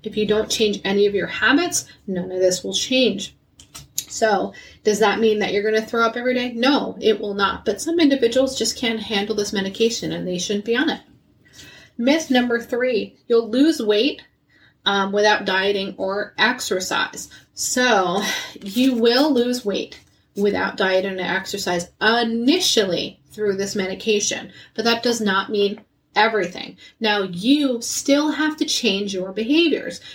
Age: 30-49